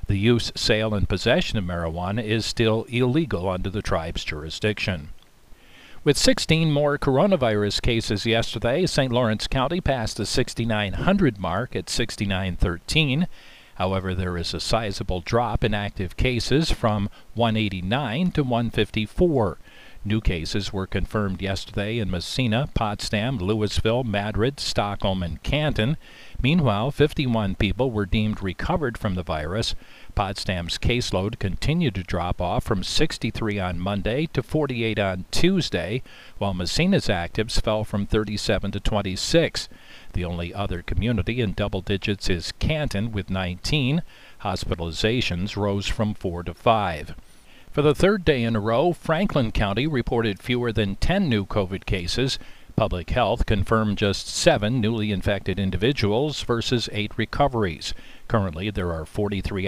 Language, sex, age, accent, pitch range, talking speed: English, male, 50-69, American, 95-120 Hz, 135 wpm